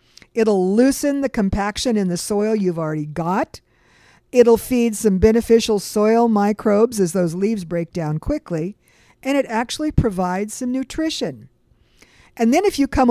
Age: 50-69